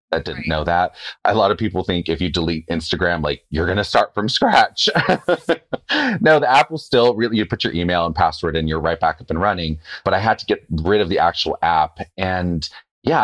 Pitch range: 85-120 Hz